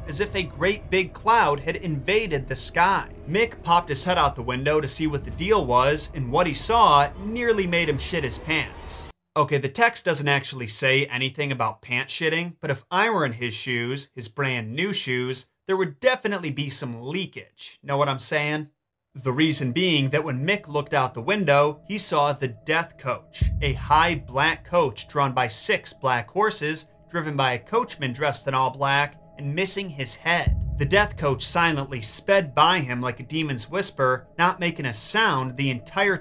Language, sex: English, male